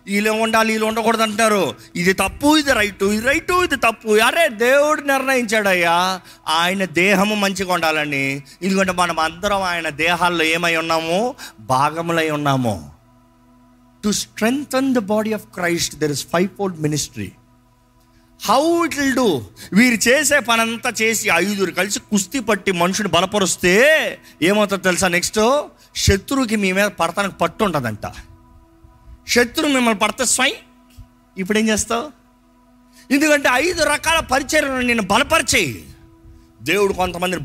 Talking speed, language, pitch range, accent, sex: 125 wpm, Telugu, 160-240 Hz, native, male